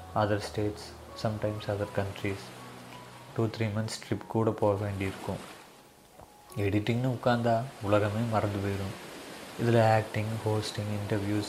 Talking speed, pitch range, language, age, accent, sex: 110 wpm, 105-120 Hz, Tamil, 30-49, native, male